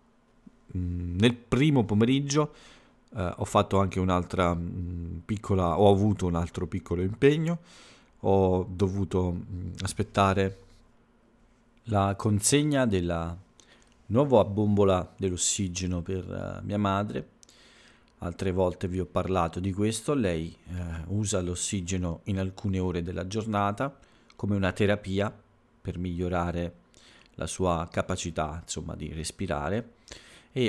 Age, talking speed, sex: 40-59, 115 wpm, male